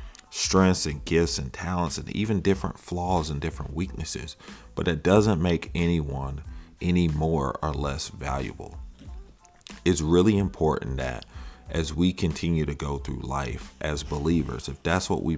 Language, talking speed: English, 150 wpm